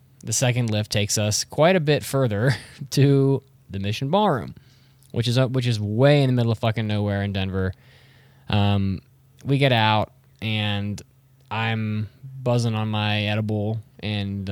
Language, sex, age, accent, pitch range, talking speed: English, male, 20-39, American, 105-130 Hz, 155 wpm